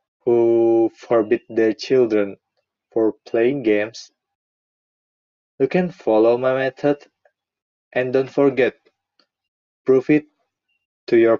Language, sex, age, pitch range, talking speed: English, male, 20-39, 110-130 Hz, 100 wpm